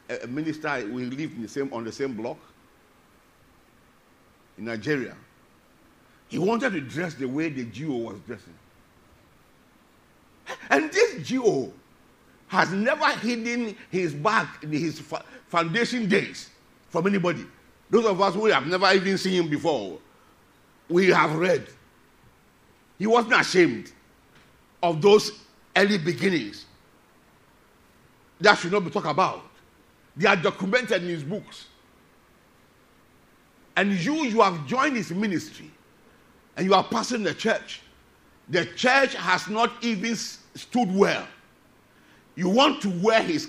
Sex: male